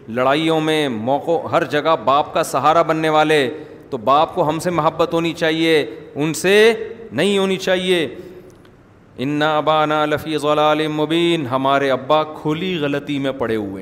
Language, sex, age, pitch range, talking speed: Urdu, male, 40-59, 130-180 Hz, 150 wpm